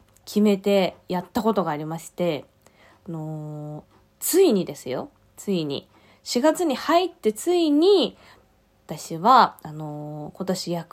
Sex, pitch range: female, 170-270 Hz